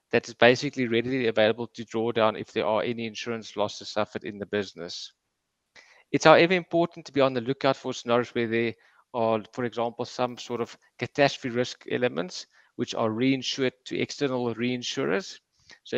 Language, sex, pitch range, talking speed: English, male, 115-130 Hz, 175 wpm